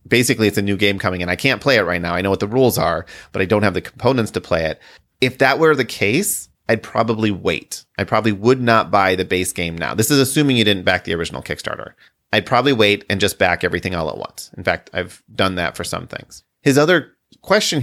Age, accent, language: 30-49, American, English